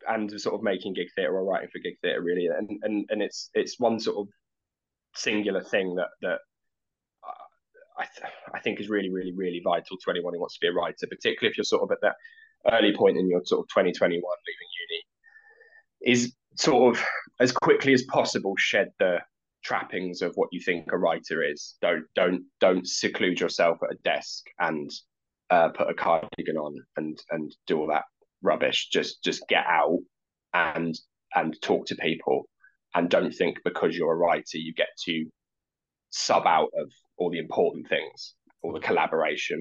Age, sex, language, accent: 20-39, male, English, British